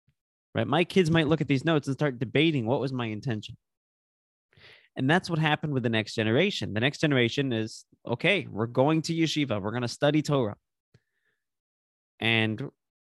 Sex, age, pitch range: male, 20-39, 115-150 Hz